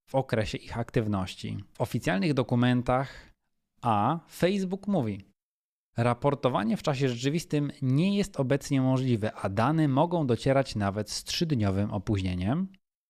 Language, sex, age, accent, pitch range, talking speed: Polish, male, 20-39, native, 110-140 Hz, 120 wpm